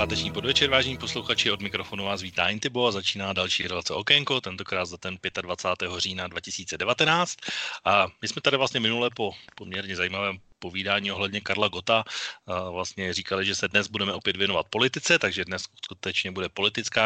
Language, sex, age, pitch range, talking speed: Slovak, male, 30-49, 95-110 Hz, 165 wpm